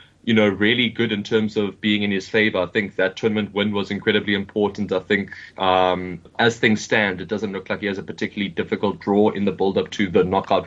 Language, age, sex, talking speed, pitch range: English, 20-39, male, 230 wpm, 100-115 Hz